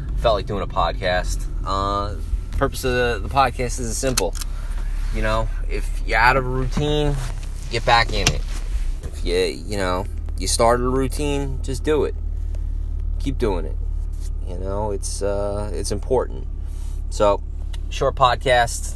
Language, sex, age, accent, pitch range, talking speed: English, male, 20-39, American, 75-110 Hz, 150 wpm